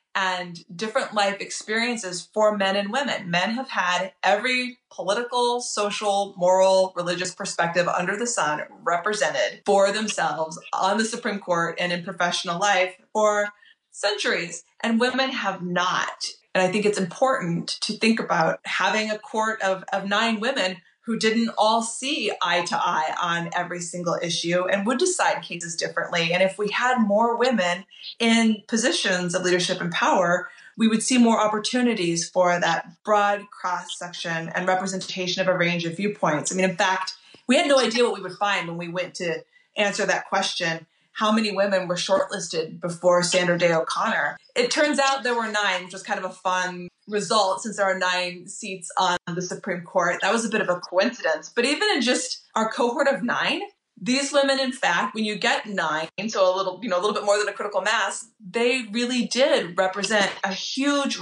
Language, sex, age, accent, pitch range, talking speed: English, female, 20-39, American, 180-230 Hz, 185 wpm